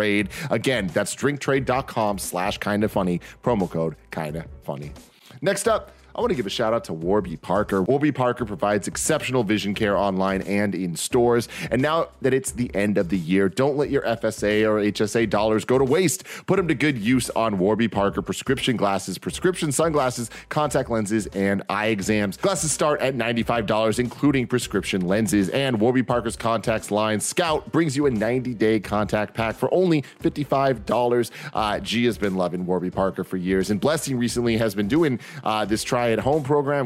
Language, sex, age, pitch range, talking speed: English, male, 30-49, 100-130 Hz, 180 wpm